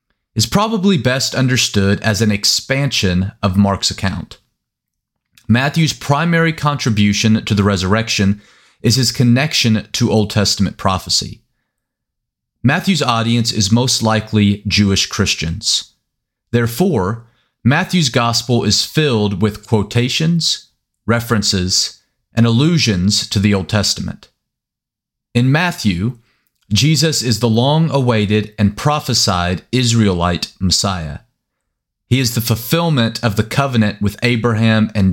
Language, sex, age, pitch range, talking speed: English, male, 30-49, 100-120 Hz, 110 wpm